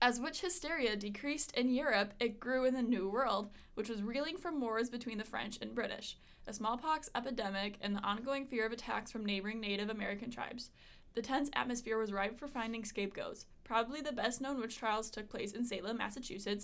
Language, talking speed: English, 200 wpm